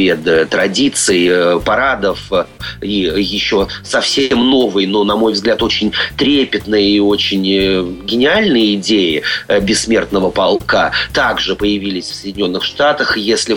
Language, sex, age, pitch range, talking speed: Russian, male, 30-49, 100-120 Hz, 105 wpm